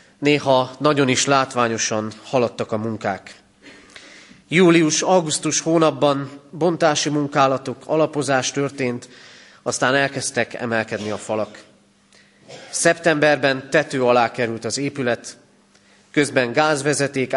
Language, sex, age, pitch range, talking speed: Hungarian, male, 30-49, 115-145 Hz, 90 wpm